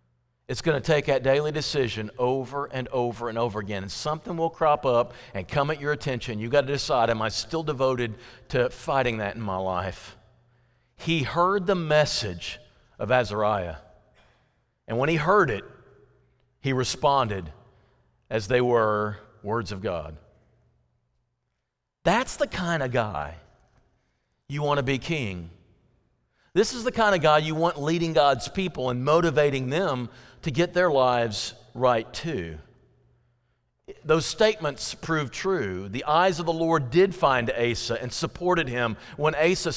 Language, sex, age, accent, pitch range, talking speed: English, male, 40-59, American, 115-160 Hz, 155 wpm